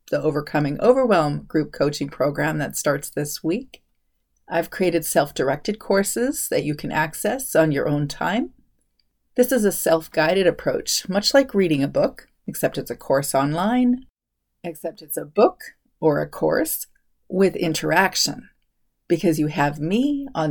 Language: English